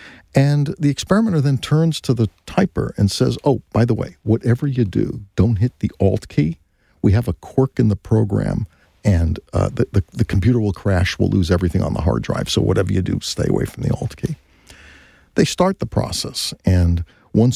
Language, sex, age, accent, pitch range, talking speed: English, male, 50-69, American, 95-155 Hz, 205 wpm